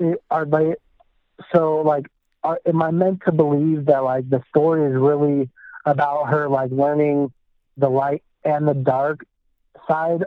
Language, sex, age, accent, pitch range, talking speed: English, male, 40-59, American, 130-155 Hz, 145 wpm